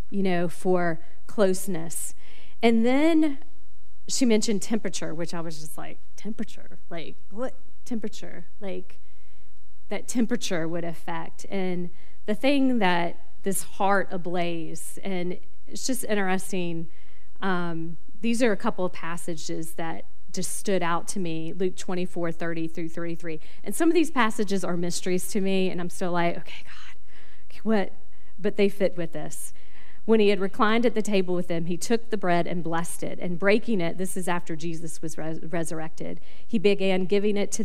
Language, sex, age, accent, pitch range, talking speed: English, female, 40-59, American, 165-200 Hz, 165 wpm